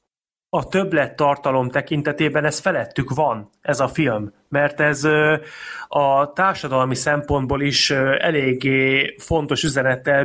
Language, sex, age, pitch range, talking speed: Hungarian, male, 30-49, 130-150 Hz, 105 wpm